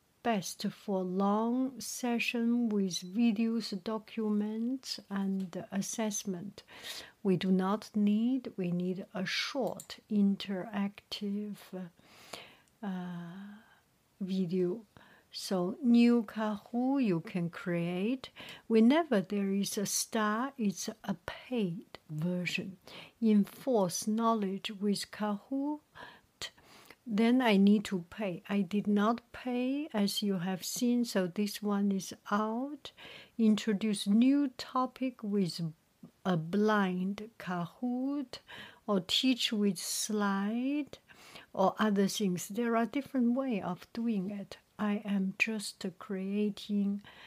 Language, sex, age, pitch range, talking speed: English, female, 60-79, 190-230 Hz, 105 wpm